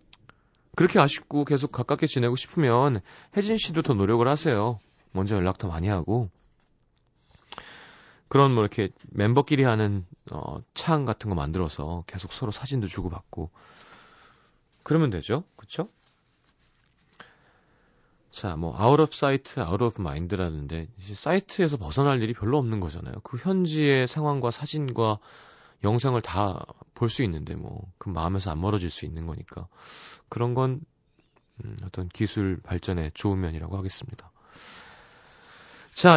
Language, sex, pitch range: Korean, male, 95-140 Hz